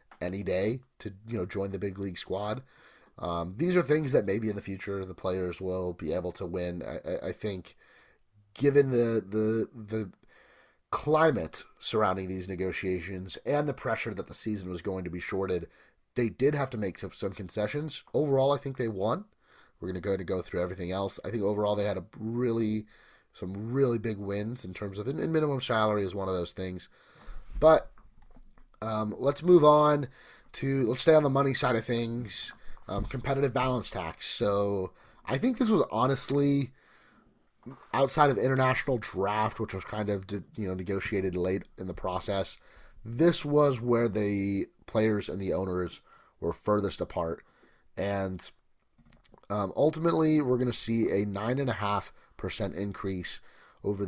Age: 30-49